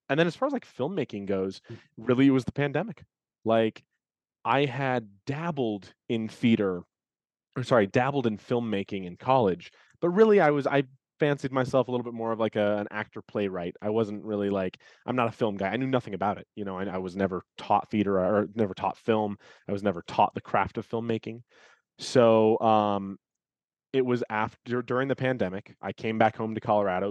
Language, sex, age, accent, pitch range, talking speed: English, male, 20-39, American, 100-125 Hz, 200 wpm